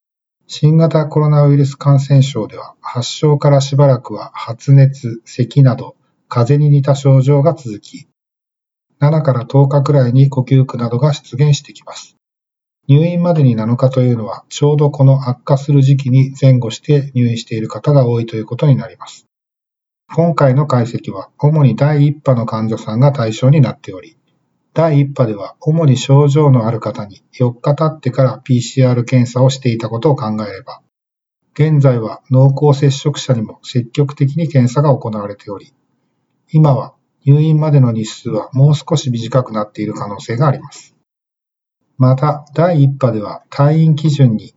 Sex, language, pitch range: male, Japanese, 120-145 Hz